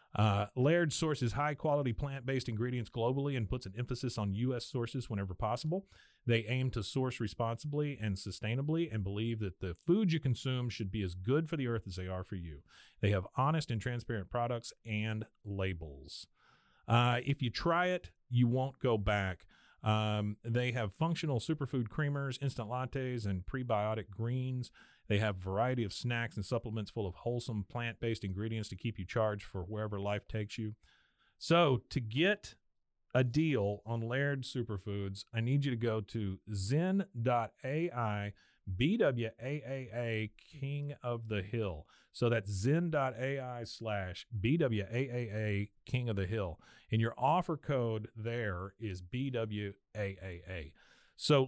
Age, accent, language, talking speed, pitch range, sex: 40-59, American, English, 150 wpm, 105-135 Hz, male